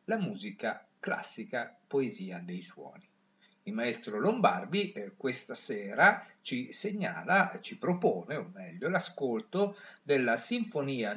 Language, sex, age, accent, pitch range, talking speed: Italian, male, 50-69, native, 175-220 Hz, 115 wpm